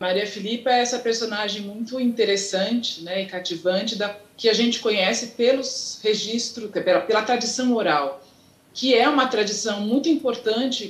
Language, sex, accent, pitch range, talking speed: Portuguese, female, Brazilian, 185-250 Hz, 150 wpm